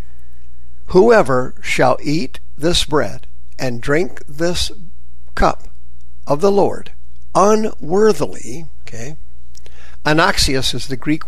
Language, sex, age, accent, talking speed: English, male, 50-69, American, 95 wpm